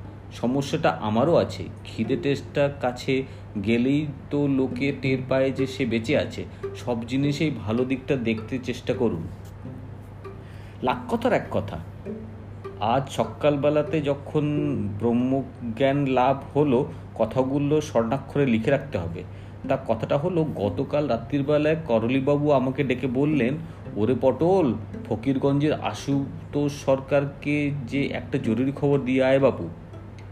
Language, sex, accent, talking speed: Bengali, male, native, 105 wpm